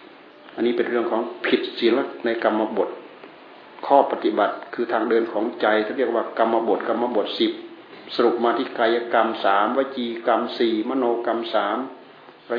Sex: male